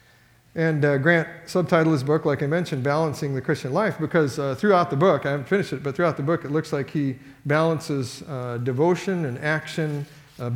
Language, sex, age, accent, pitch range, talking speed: English, male, 50-69, American, 135-160 Hz, 205 wpm